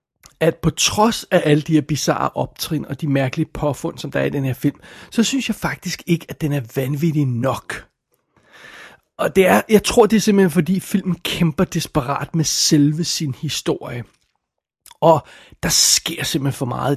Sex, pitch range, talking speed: male, 145-170 Hz, 175 wpm